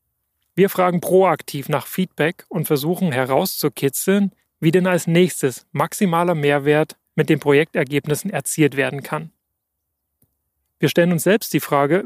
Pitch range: 135-175 Hz